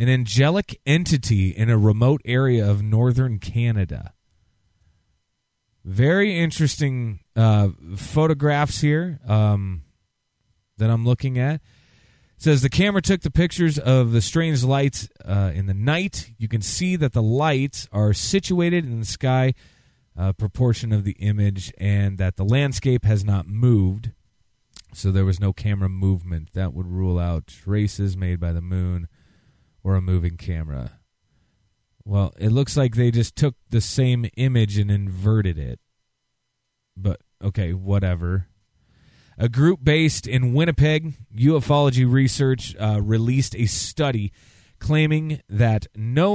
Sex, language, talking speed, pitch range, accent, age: male, English, 140 wpm, 100-130 Hz, American, 30-49